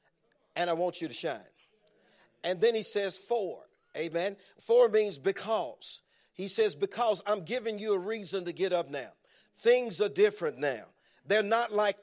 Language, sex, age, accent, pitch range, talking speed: English, male, 50-69, American, 190-225 Hz, 170 wpm